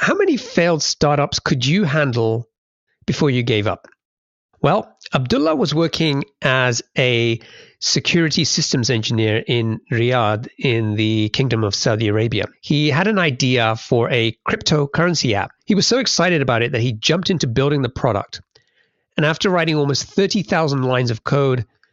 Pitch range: 120-155 Hz